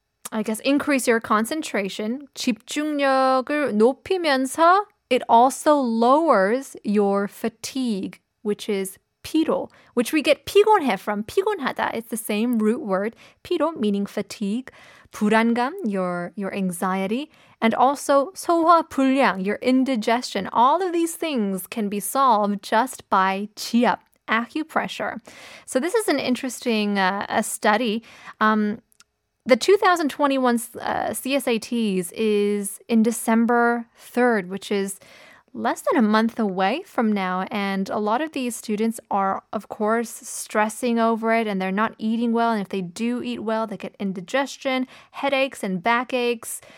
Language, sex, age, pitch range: Korean, female, 20-39, 210-265 Hz